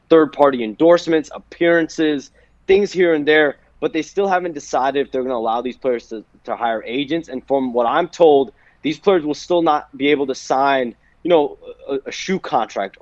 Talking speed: 205 wpm